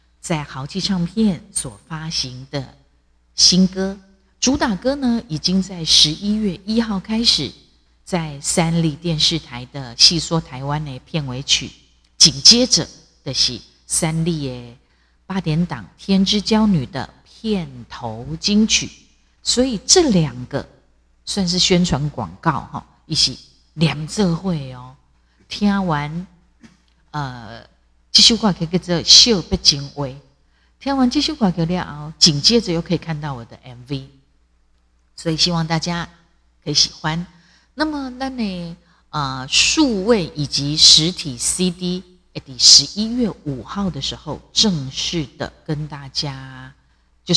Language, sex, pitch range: Chinese, female, 140-190 Hz